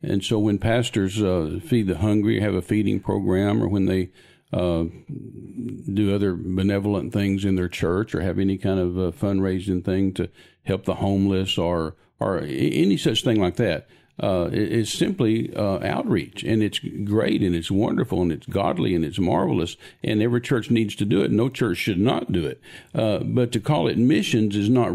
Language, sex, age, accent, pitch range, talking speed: English, male, 50-69, American, 95-115 Hz, 190 wpm